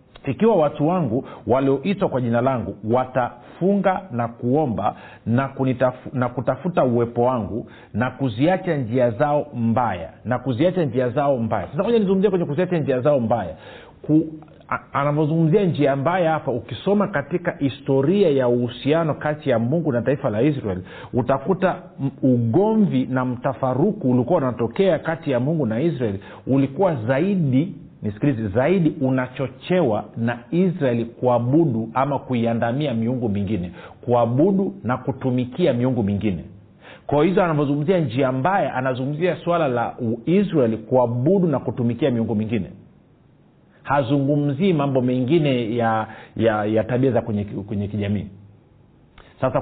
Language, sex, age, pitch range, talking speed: Swahili, male, 50-69, 120-155 Hz, 125 wpm